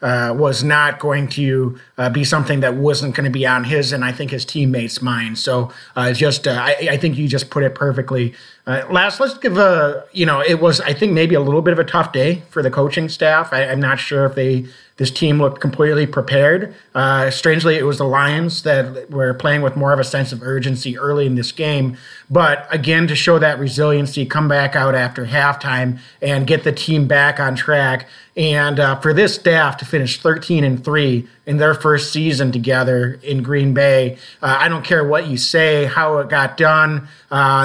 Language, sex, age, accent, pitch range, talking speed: English, male, 30-49, American, 135-165 Hz, 215 wpm